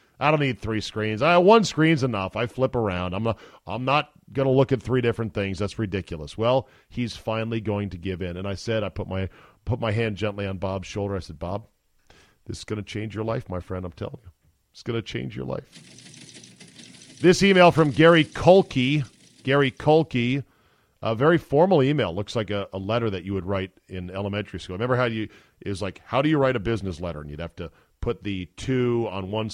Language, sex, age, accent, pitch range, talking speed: English, male, 40-59, American, 100-130 Hz, 220 wpm